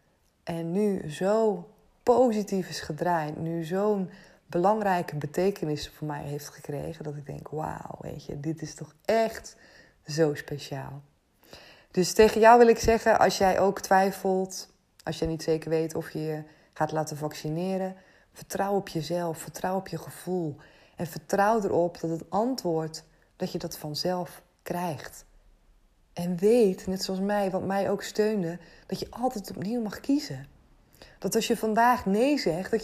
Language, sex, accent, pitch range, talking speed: Dutch, female, Dutch, 160-220 Hz, 160 wpm